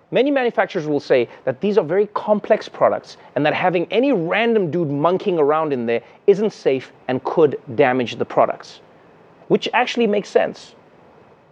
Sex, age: male, 30-49